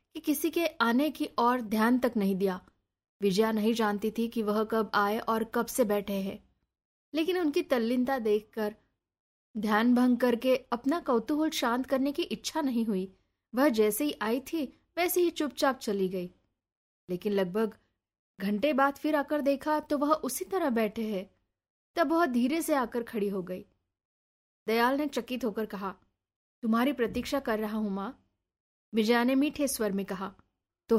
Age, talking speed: 20-39, 170 wpm